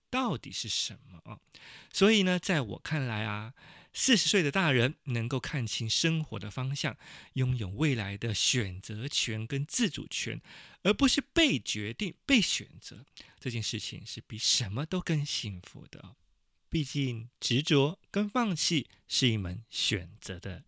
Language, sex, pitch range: Chinese, male, 110-160 Hz